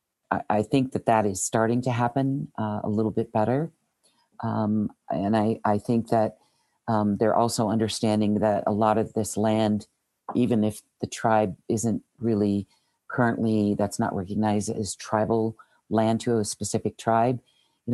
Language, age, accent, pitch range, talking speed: English, 50-69, American, 105-115 Hz, 155 wpm